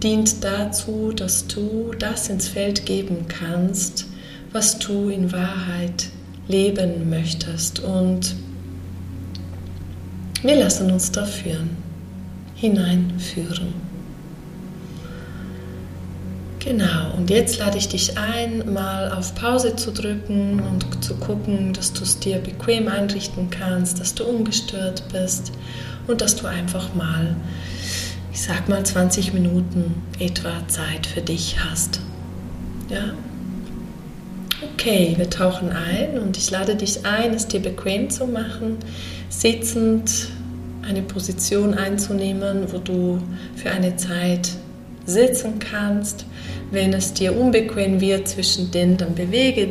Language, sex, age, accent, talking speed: German, female, 30-49, German, 115 wpm